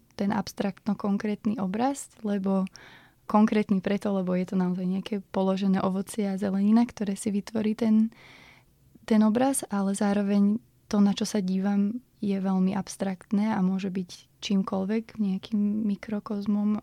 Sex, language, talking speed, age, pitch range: female, Slovak, 135 wpm, 20-39, 190-210 Hz